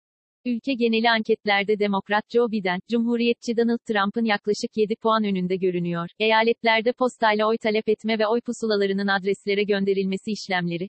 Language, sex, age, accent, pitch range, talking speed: Turkish, female, 40-59, native, 200-235 Hz, 140 wpm